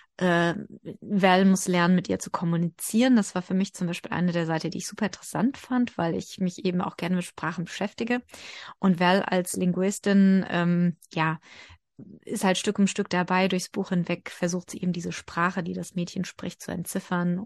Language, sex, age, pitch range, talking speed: German, female, 30-49, 180-205 Hz, 195 wpm